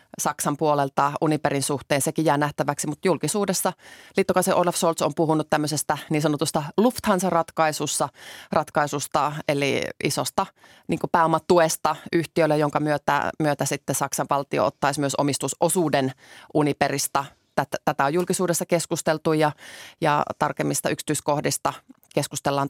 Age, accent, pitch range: 30-49, native, 140-170 Hz